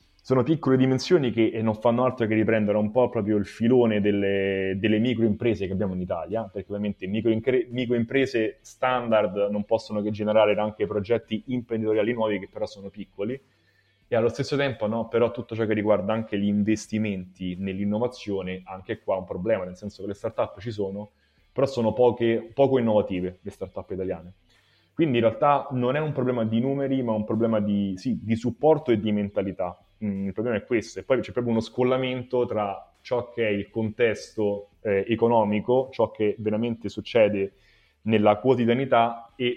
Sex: male